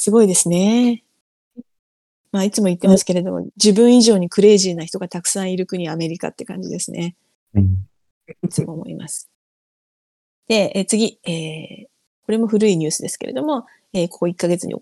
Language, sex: Japanese, female